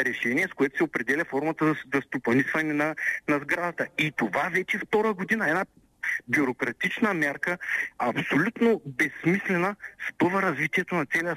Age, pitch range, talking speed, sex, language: 50-69, 140-180 Hz, 135 wpm, male, Bulgarian